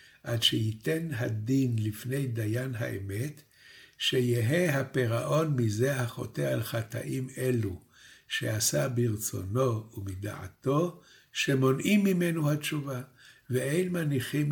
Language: Hebrew